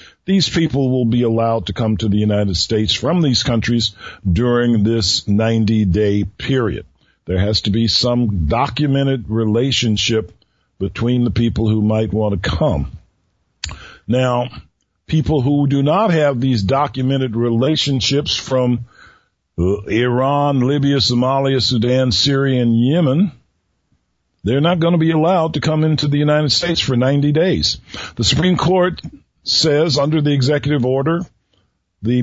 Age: 50-69